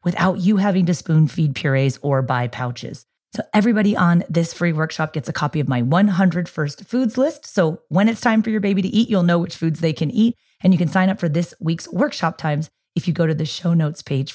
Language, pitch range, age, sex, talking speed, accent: English, 140-185 Hz, 30-49, female, 245 wpm, American